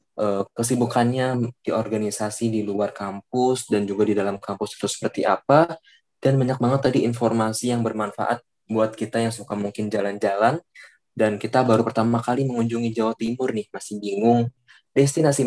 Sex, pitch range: male, 105-130 Hz